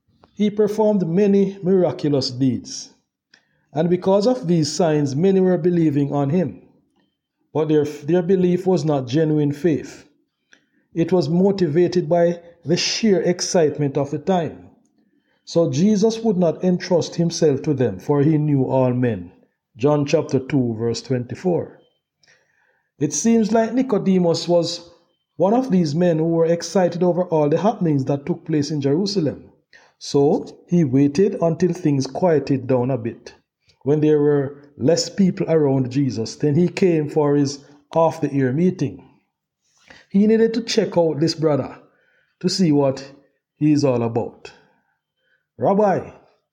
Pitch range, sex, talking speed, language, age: 145-185 Hz, male, 145 wpm, English, 50-69